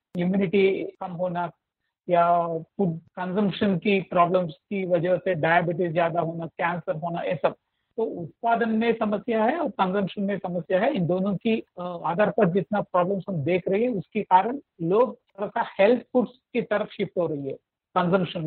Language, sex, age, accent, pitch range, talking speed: Hindi, male, 50-69, native, 175-210 Hz, 170 wpm